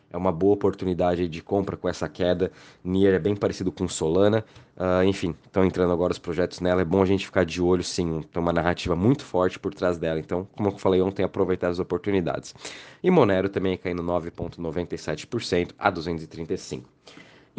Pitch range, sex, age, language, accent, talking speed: 90-105 Hz, male, 20-39, Portuguese, Brazilian, 185 wpm